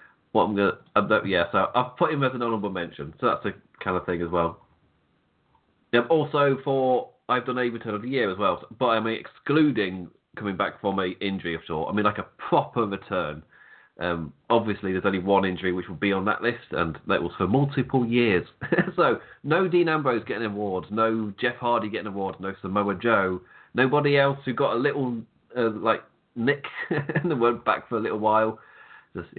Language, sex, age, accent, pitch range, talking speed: English, male, 30-49, British, 95-145 Hz, 200 wpm